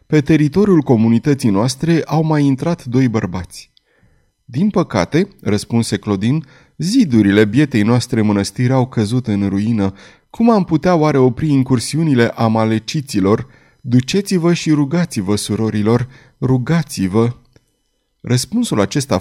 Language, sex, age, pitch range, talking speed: Romanian, male, 30-49, 110-160 Hz, 110 wpm